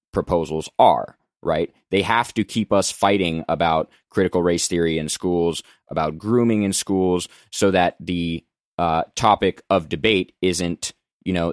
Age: 20-39